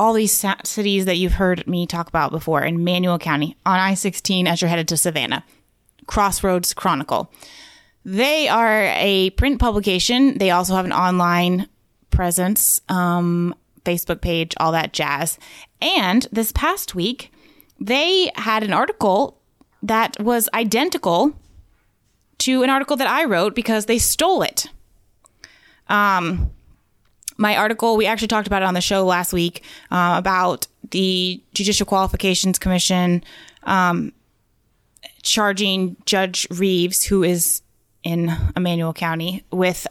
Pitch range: 175-220 Hz